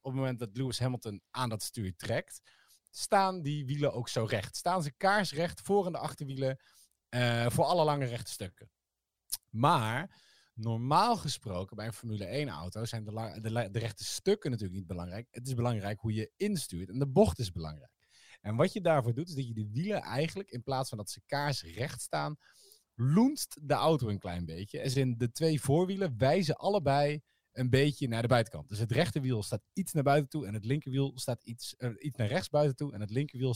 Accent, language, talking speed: Dutch, Dutch, 205 wpm